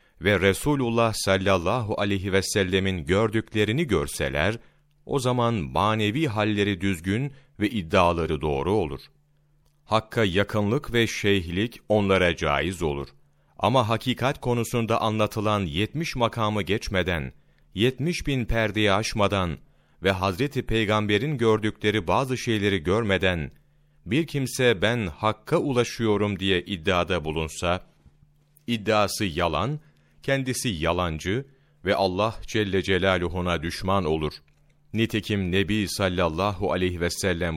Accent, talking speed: native, 105 wpm